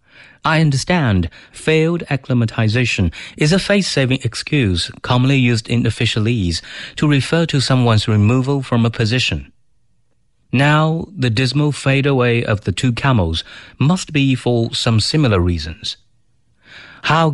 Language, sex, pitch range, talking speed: English, male, 110-140 Hz, 120 wpm